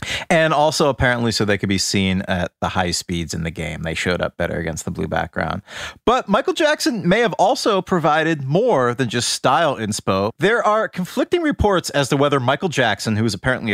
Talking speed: 205 wpm